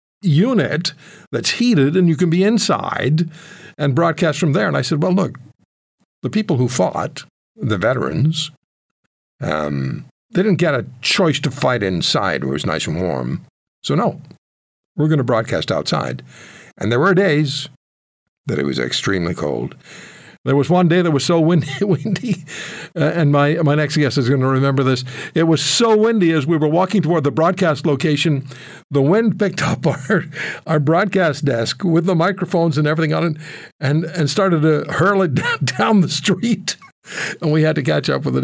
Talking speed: 185 wpm